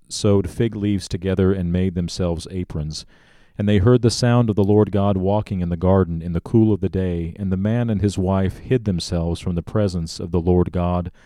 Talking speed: 225 wpm